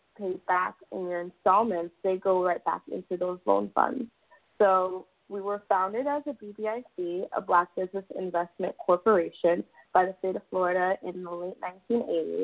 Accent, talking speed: American, 160 wpm